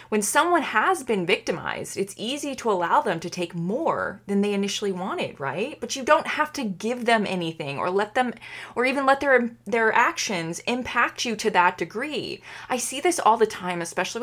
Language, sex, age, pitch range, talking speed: English, female, 20-39, 170-230 Hz, 200 wpm